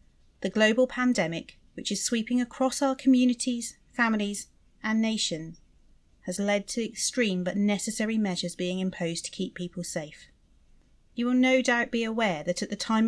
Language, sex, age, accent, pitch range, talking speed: English, female, 40-59, British, 175-235 Hz, 160 wpm